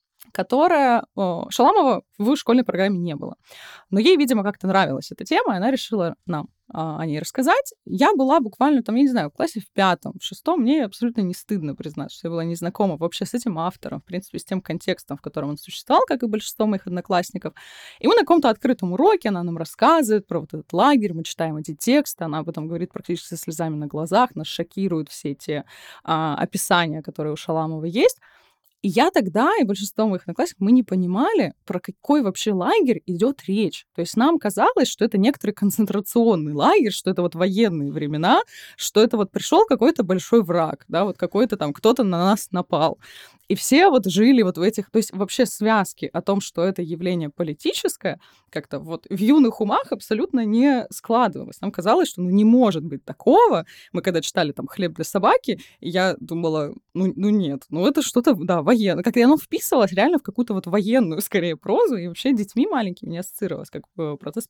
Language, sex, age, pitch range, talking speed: Russian, female, 20-39, 170-235 Hz, 195 wpm